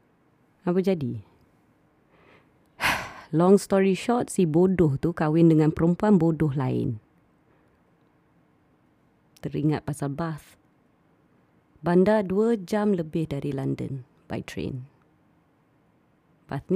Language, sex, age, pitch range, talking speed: Malay, female, 20-39, 130-170 Hz, 90 wpm